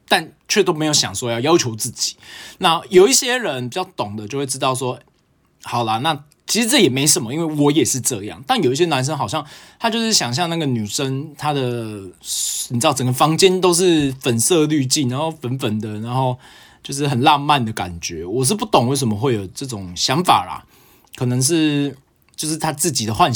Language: Chinese